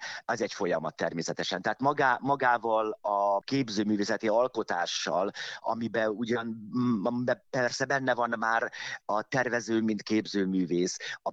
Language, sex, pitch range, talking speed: Hungarian, male, 105-120 Hz, 110 wpm